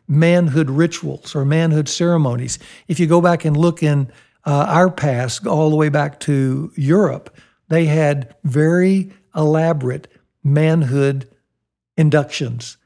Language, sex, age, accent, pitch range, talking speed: English, male, 60-79, American, 140-170 Hz, 125 wpm